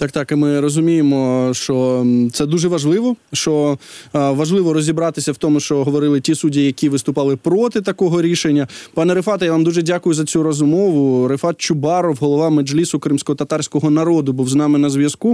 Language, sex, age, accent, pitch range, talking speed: Ukrainian, male, 20-39, native, 150-175 Hz, 170 wpm